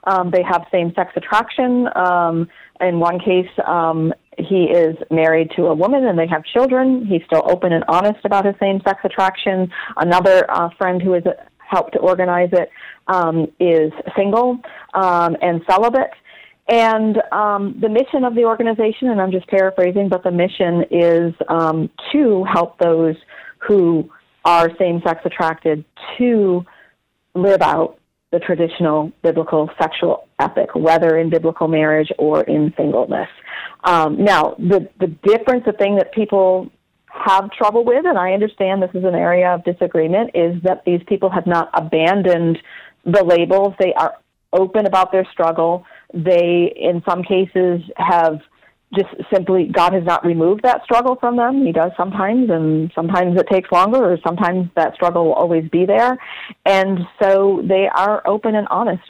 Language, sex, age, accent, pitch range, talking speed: English, female, 40-59, American, 170-200 Hz, 160 wpm